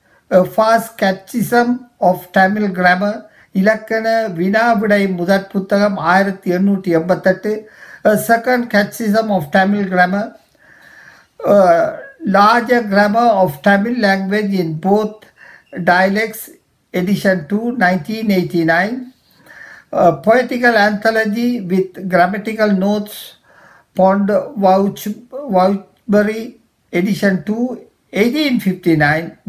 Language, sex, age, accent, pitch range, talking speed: Tamil, male, 50-69, native, 185-225 Hz, 85 wpm